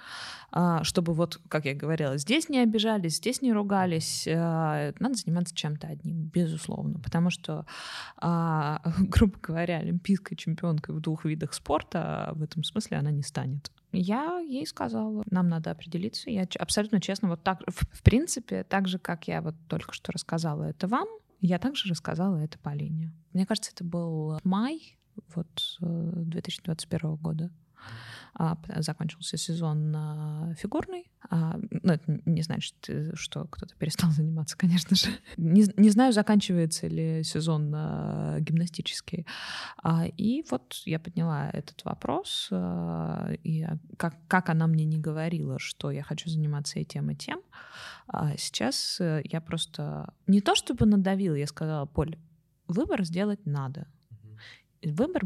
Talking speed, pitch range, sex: 130 wpm, 155-190 Hz, female